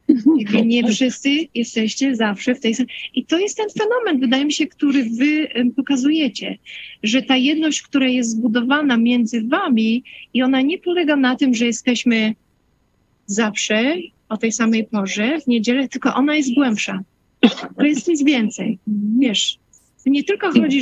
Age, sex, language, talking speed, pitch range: 40-59, female, Polish, 155 wpm, 225-280 Hz